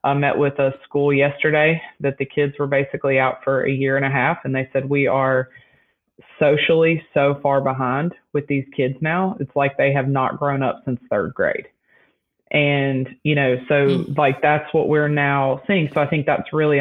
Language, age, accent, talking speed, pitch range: English, 20-39, American, 200 wpm, 135-155 Hz